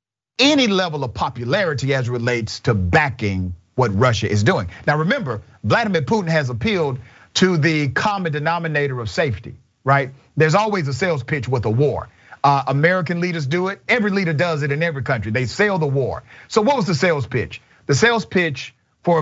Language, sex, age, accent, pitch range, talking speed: English, male, 40-59, American, 125-160 Hz, 180 wpm